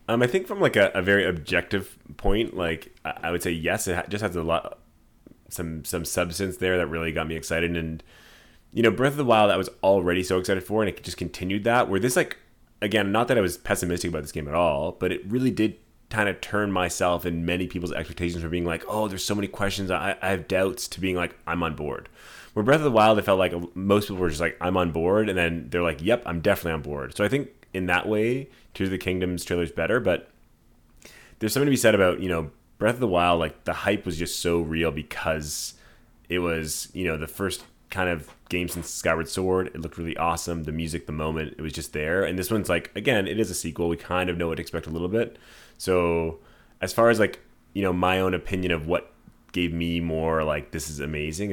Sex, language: male, English